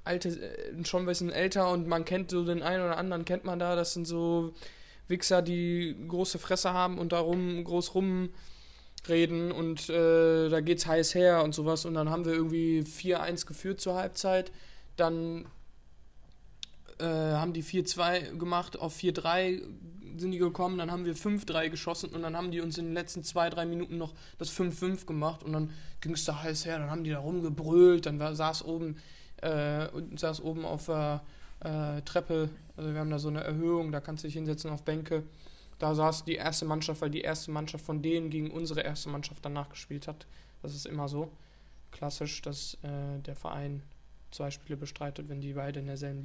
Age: 20-39